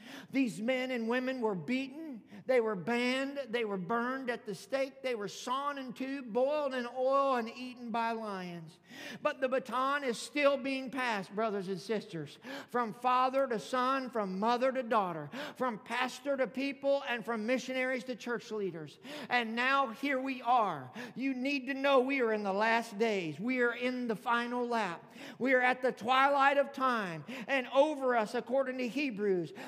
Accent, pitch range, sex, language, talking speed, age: American, 225-275 Hz, male, English, 180 wpm, 50-69